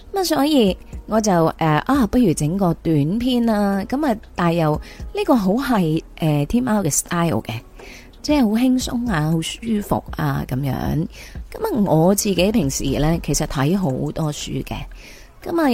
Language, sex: Chinese, female